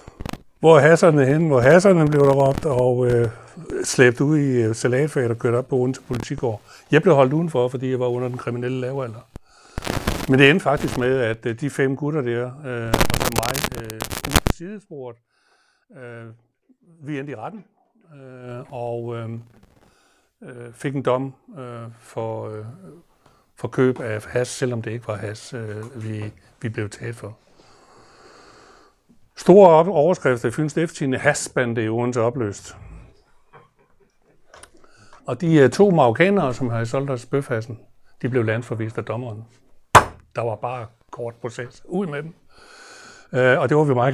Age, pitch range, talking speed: 60-79, 115-140 Hz, 160 wpm